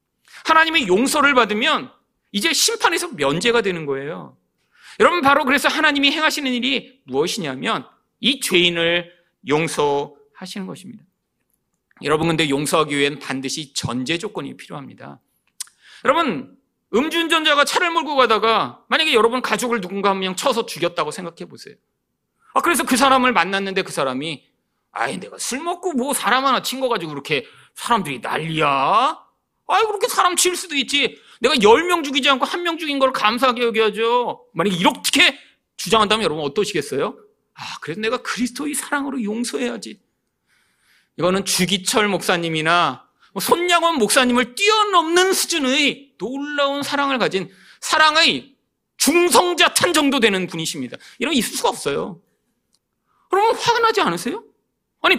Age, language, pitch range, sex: 40-59, Korean, 190-315 Hz, male